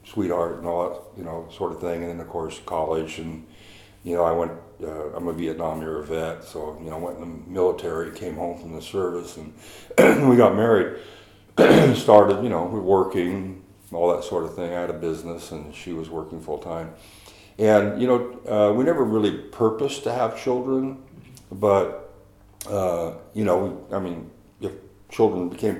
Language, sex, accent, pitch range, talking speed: English, male, American, 85-105 Hz, 190 wpm